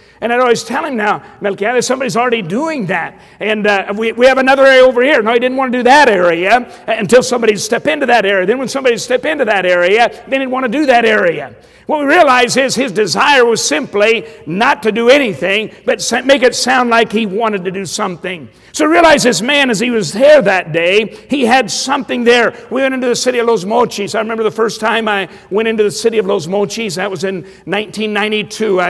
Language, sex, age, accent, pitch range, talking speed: English, male, 50-69, American, 205-245 Hz, 225 wpm